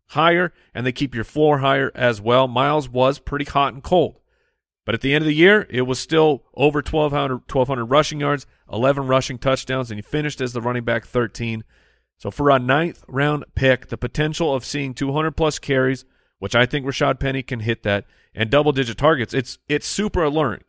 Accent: American